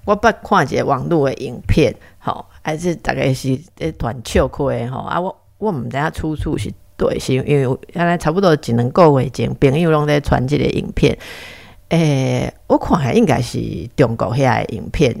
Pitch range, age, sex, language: 135-185 Hz, 50-69, female, Chinese